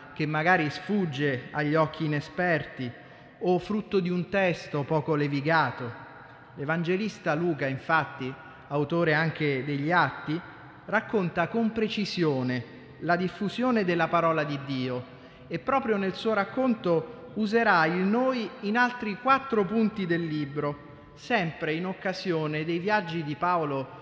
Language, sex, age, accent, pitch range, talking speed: Italian, male, 30-49, native, 150-200 Hz, 125 wpm